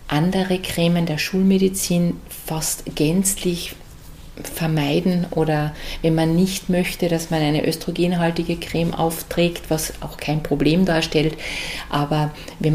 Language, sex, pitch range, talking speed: German, female, 160-180 Hz, 120 wpm